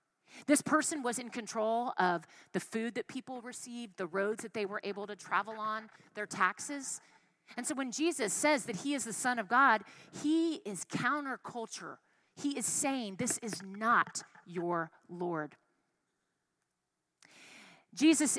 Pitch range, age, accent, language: 195-260 Hz, 30-49, American, English